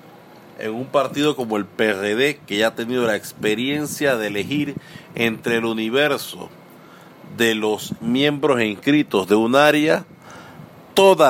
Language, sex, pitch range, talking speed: Spanish, male, 105-140 Hz, 135 wpm